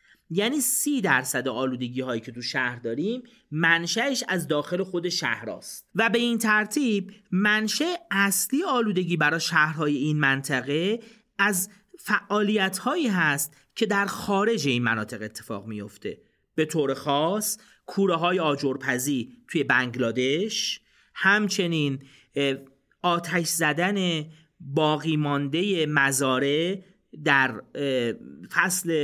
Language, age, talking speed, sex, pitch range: Persian, 40-59, 105 wpm, male, 135-205 Hz